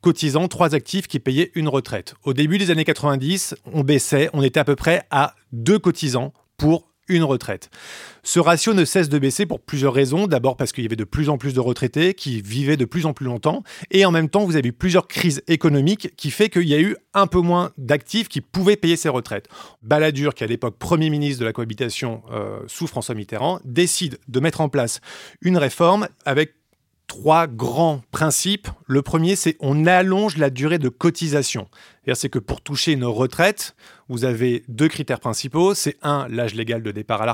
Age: 30-49